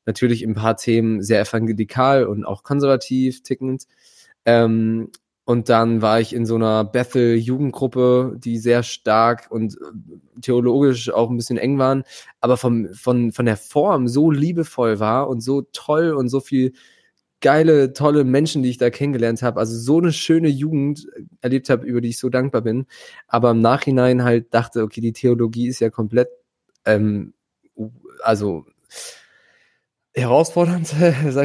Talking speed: 155 wpm